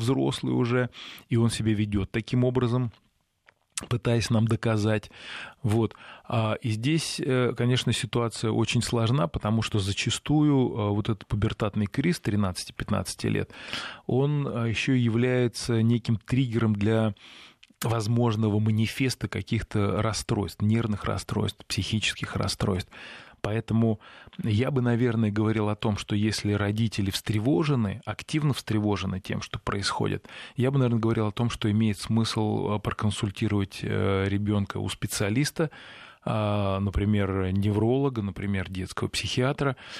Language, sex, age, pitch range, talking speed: Russian, male, 20-39, 105-120 Hz, 115 wpm